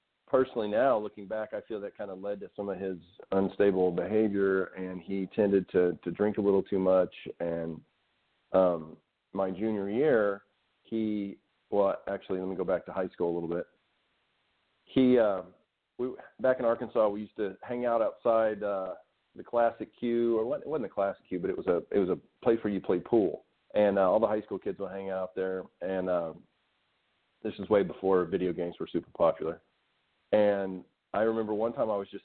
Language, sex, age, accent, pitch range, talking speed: English, male, 40-59, American, 95-120 Hz, 205 wpm